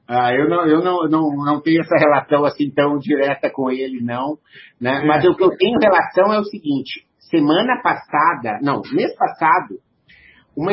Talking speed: 160 wpm